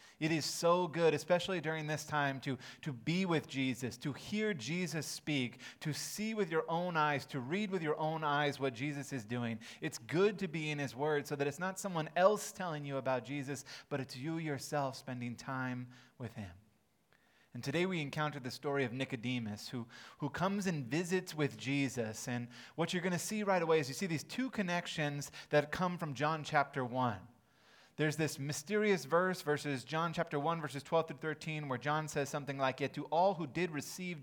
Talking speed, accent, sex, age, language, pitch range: 205 wpm, American, male, 30-49, English, 130-160 Hz